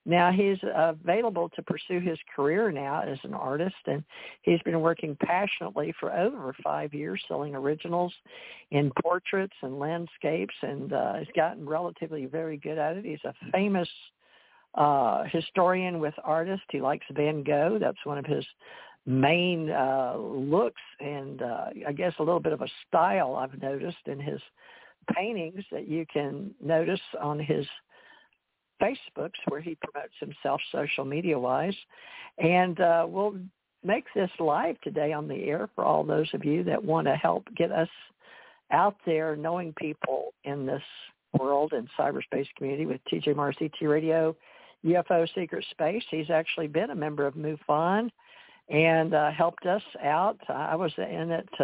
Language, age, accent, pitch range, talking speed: English, 60-79, American, 150-180 Hz, 160 wpm